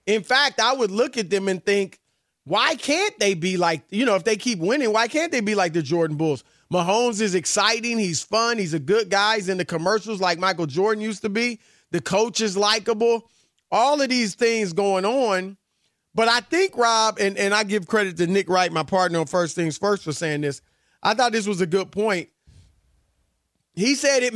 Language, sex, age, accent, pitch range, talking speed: English, male, 30-49, American, 185-240 Hz, 215 wpm